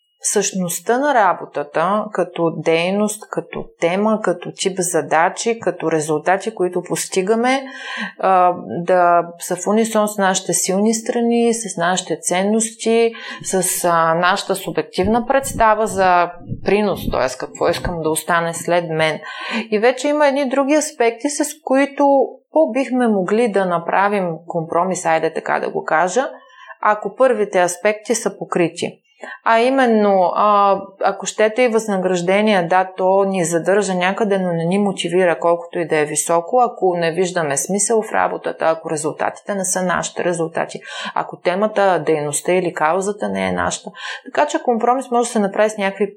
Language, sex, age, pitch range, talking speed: Bulgarian, female, 30-49, 170-220 Hz, 145 wpm